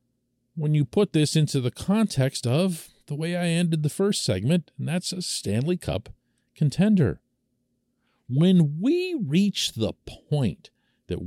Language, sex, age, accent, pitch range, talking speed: English, male, 50-69, American, 120-165 Hz, 145 wpm